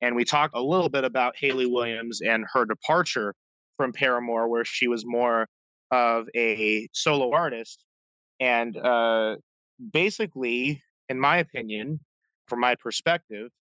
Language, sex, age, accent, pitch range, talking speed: English, male, 30-49, American, 120-145 Hz, 135 wpm